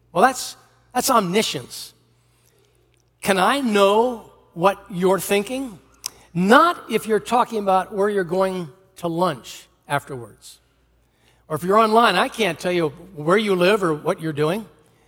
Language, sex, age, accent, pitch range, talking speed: English, male, 60-79, American, 125-200 Hz, 145 wpm